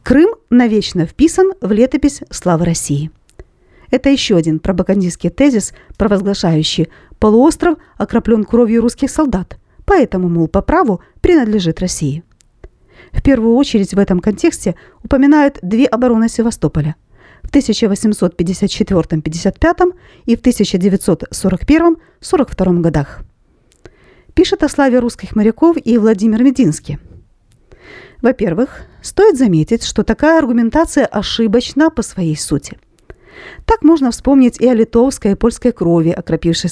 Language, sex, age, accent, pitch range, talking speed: Russian, female, 40-59, native, 190-260 Hz, 115 wpm